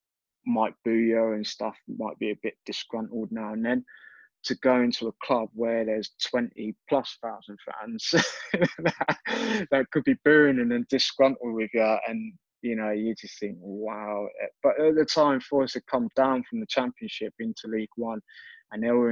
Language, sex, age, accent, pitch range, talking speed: English, male, 20-39, British, 110-140 Hz, 180 wpm